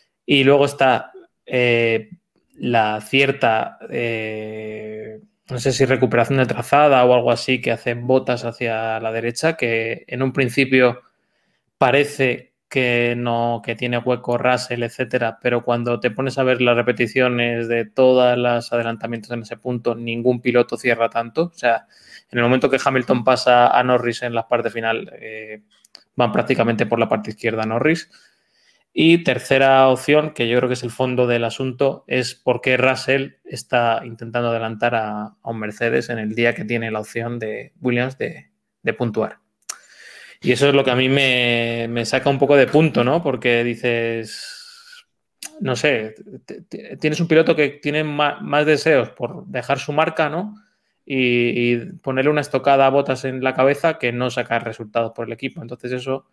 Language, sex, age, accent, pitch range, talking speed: Spanish, male, 20-39, Spanish, 115-135 Hz, 170 wpm